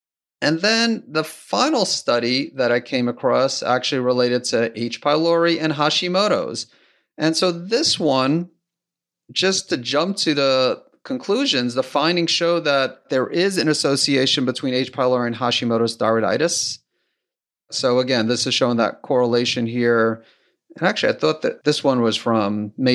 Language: English